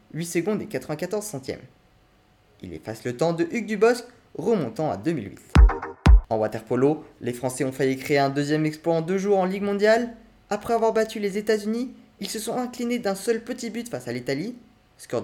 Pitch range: 130-215 Hz